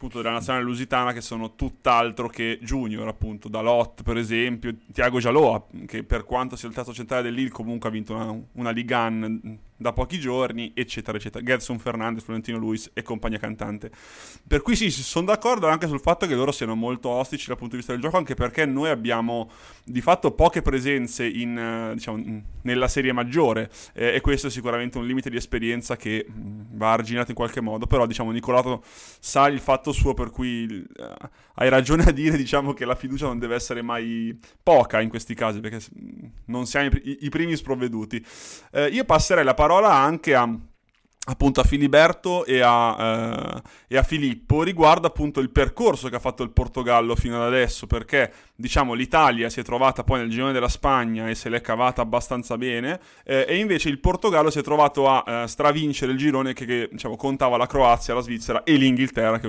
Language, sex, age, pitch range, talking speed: Italian, male, 20-39, 115-135 Hz, 185 wpm